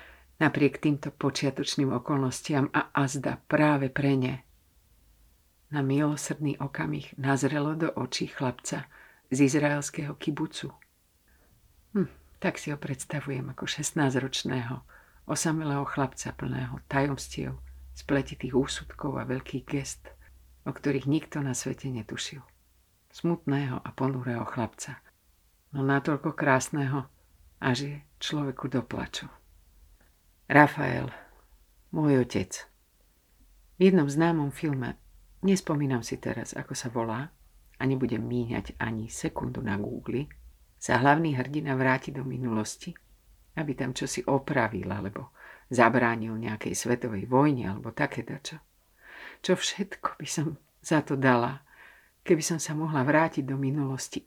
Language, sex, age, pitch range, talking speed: Slovak, female, 50-69, 110-150 Hz, 115 wpm